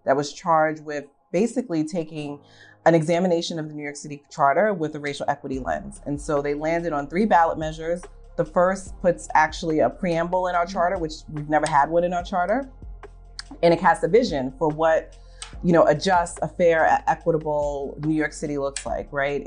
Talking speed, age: 200 wpm, 30-49